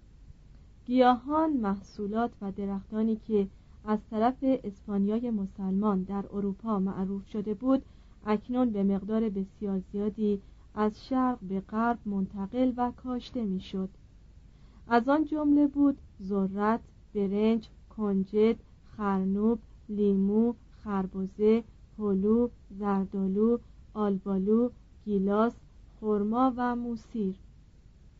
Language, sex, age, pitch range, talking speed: Persian, female, 40-59, 195-235 Hz, 95 wpm